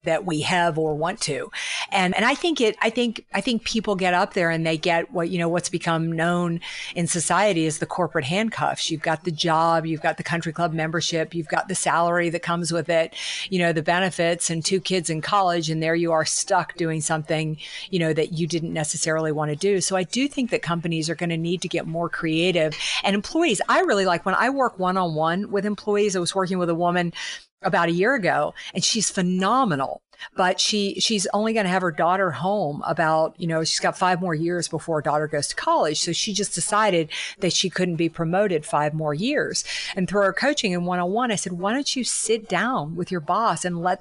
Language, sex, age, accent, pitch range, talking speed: English, female, 50-69, American, 165-195 Hz, 235 wpm